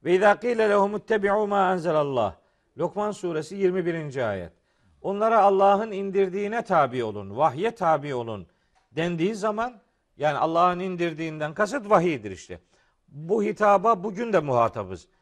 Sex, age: male, 50-69